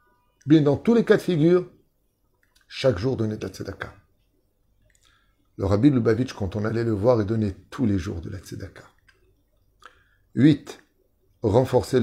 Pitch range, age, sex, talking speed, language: 100-120 Hz, 30-49, male, 145 wpm, French